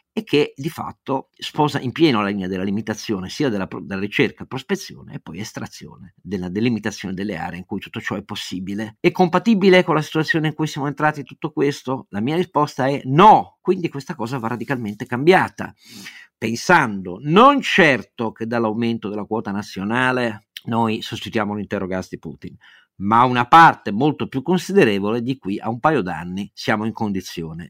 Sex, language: male, Italian